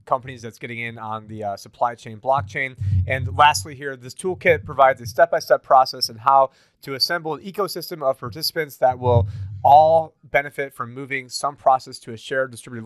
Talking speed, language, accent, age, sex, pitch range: 180 wpm, English, American, 30-49, male, 125-150 Hz